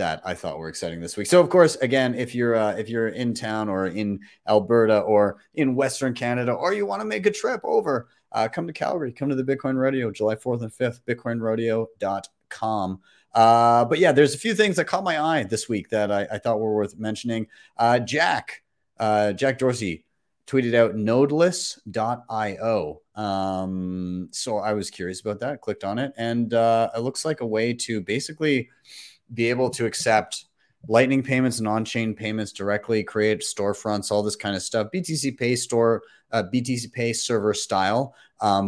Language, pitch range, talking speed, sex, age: English, 105-125 Hz, 185 wpm, male, 30-49